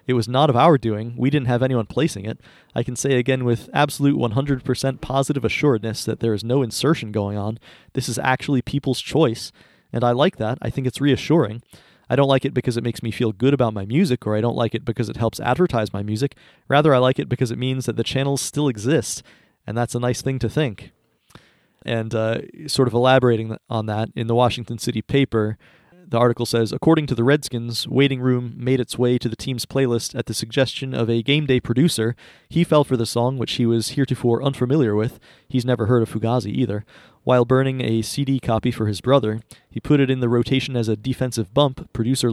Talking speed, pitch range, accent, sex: 220 wpm, 115-135 Hz, American, male